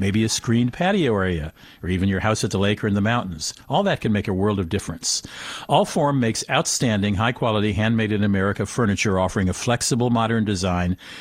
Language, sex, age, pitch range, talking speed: English, male, 50-69, 105-135 Hz, 185 wpm